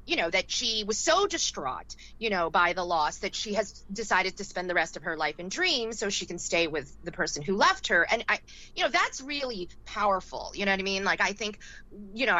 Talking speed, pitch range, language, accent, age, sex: 250 wpm, 175-235 Hz, English, American, 30-49, female